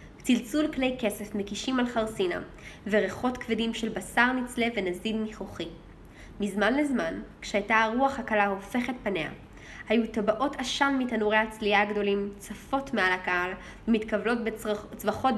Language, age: Hebrew, 10-29